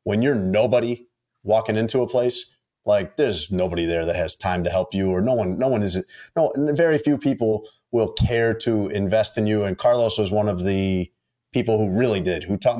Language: English